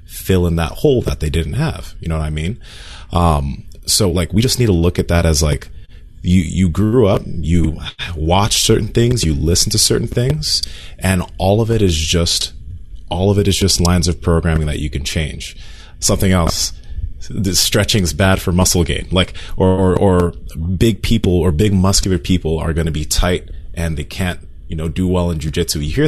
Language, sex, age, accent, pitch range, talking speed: English, male, 30-49, American, 80-100 Hz, 210 wpm